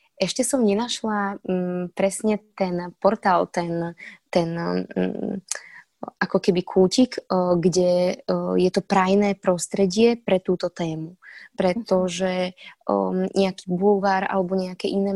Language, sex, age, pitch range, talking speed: Czech, female, 20-39, 180-210 Hz, 120 wpm